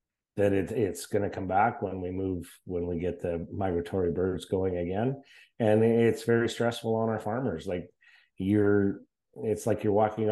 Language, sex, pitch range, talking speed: English, male, 95-115 Hz, 175 wpm